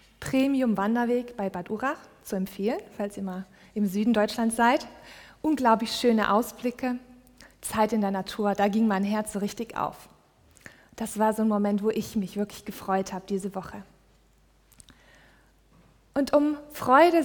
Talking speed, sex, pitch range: 155 wpm, female, 205-260 Hz